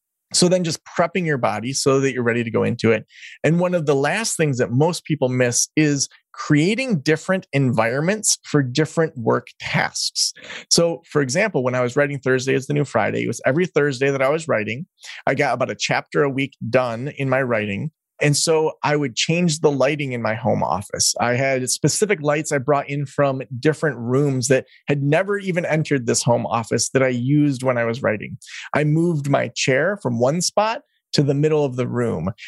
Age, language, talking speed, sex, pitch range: 30-49, English, 205 wpm, male, 130-160 Hz